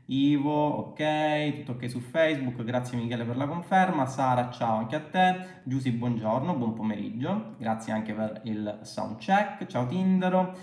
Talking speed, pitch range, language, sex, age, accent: 160 wpm, 125-175 Hz, Italian, male, 30-49, native